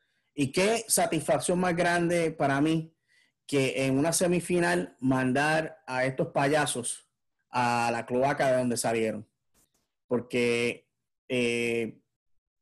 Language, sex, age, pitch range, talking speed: English, male, 30-49, 125-165 Hz, 110 wpm